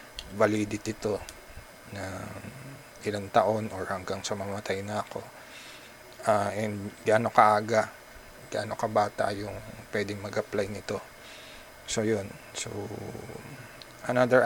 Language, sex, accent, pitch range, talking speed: English, male, Filipino, 100-115 Hz, 110 wpm